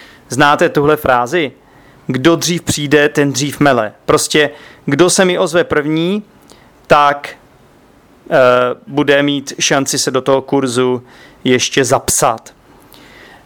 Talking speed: 115 wpm